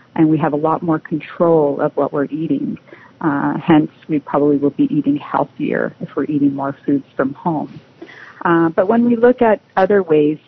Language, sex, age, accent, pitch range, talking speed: English, female, 40-59, American, 150-180 Hz, 195 wpm